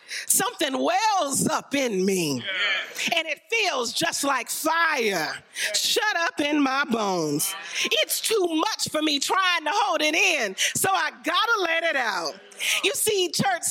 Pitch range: 235-345 Hz